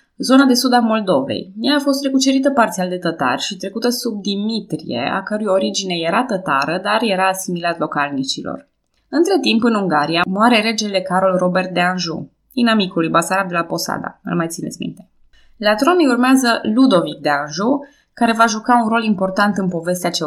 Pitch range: 175-240 Hz